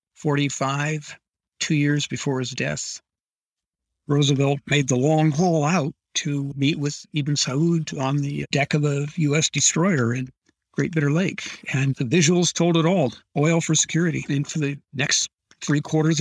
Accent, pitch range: American, 135-160 Hz